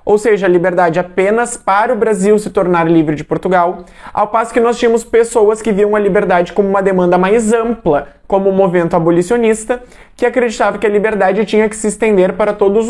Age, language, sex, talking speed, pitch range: 20-39, Portuguese, male, 200 wpm, 190-230 Hz